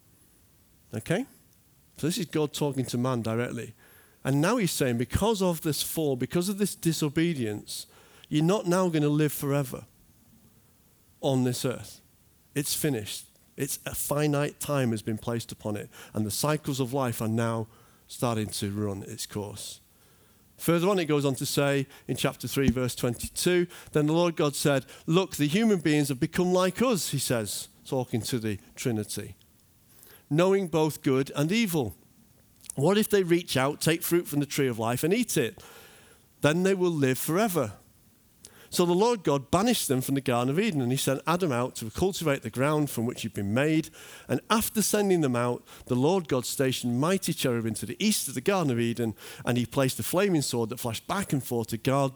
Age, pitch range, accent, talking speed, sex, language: 50-69, 120-165 Hz, British, 190 wpm, male, English